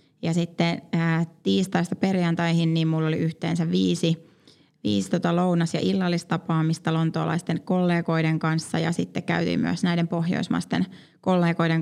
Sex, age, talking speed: female, 20-39, 125 wpm